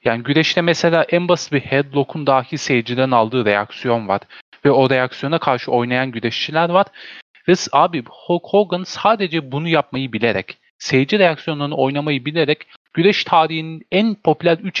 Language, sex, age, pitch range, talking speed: Turkish, male, 40-59, 125-180 Hz, 145 wpm